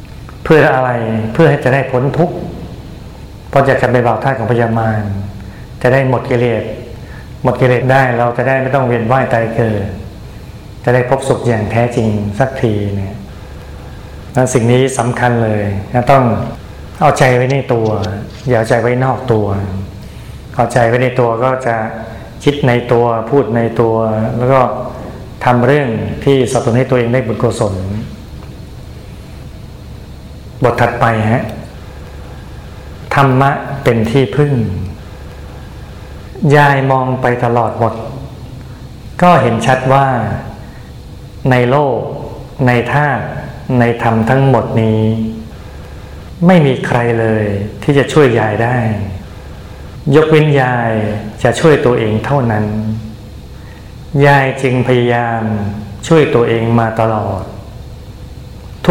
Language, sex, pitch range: Thai, male, 110-130 Hz